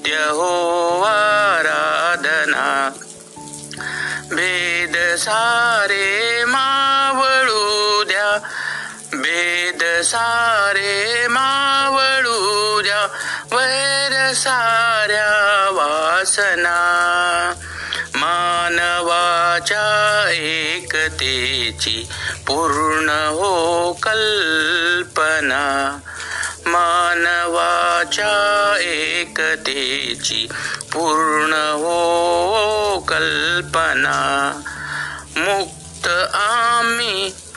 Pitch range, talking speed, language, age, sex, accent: 175-235 Hz, 35 wpm, Marathi, 60-79, male, native